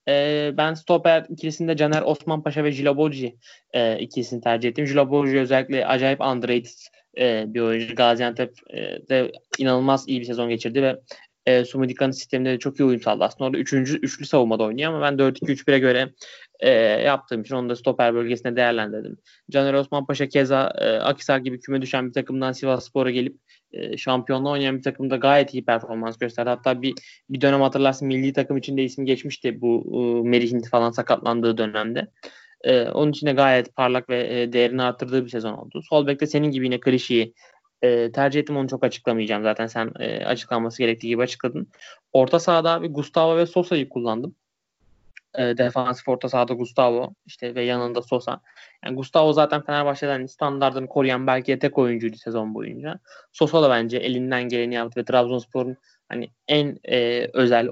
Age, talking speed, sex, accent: 20-39, 165 wpm, male, native